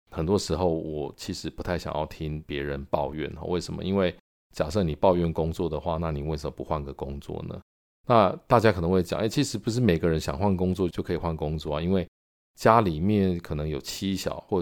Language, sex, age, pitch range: Chinese, male, 50-69, 75-90 Hz